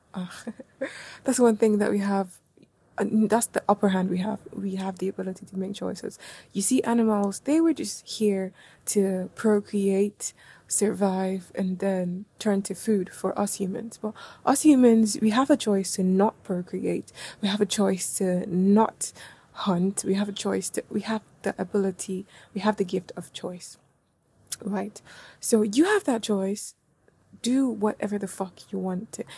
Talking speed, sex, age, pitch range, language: 170 wpm, female, 20-39, 190-225 Hz, English